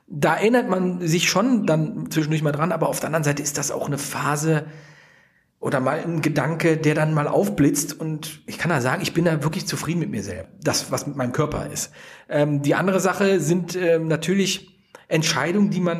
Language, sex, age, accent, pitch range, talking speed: German, male, 40-59, German, 150-185 Hz, 210 wpm